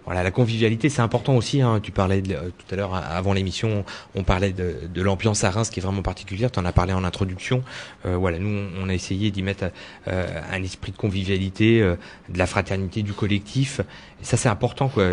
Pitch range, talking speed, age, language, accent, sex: 95-115 Hz, 235 wpm, 30-49, French, French, male